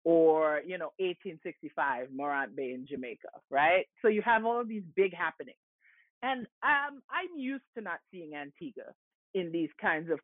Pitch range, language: 170-240 Hz, English